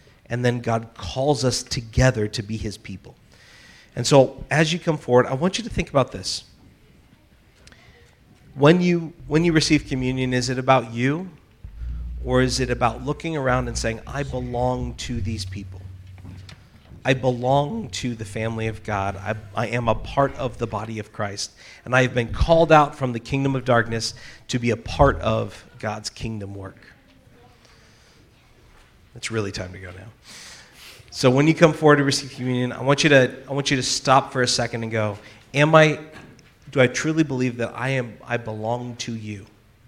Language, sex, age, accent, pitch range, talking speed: English, male, 40-59, American, 110-135 Hz, 185 wpm